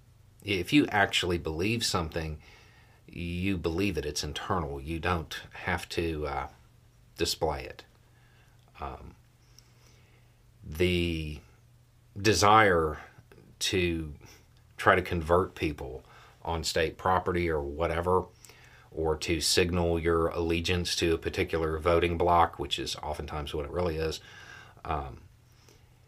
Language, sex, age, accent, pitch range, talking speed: English, male, 40-59, American, 85-115 Hz, 110 wpm